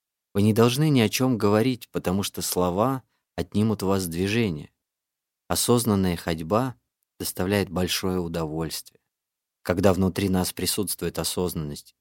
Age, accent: 30-49, native